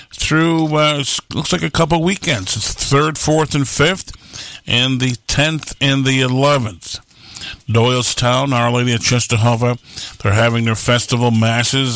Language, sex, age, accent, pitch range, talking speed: English, male, 50-69, American, 115-145 Hz, 140 wpm